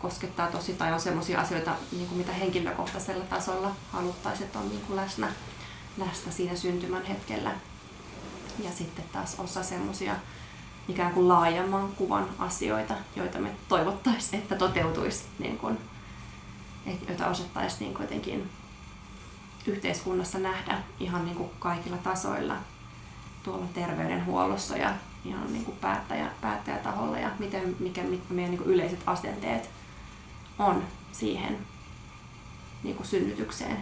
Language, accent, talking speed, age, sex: Finnish, native, 100 wpm, 20-39, female